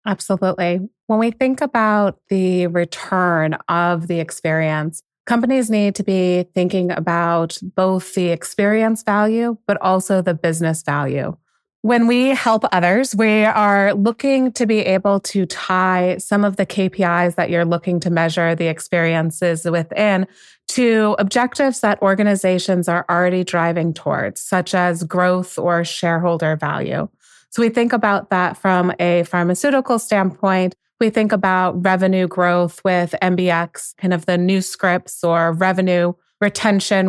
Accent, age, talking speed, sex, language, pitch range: American, 30-49, 140 wpm, female, English, 175-205 Hz